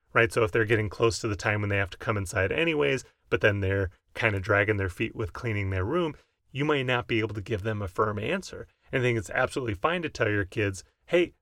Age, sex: 30-49, male